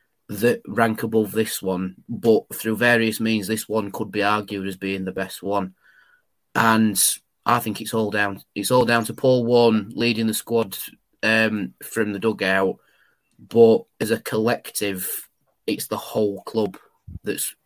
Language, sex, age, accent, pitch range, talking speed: English, male, 20-39, British, 100-115 Hz, 160 wpm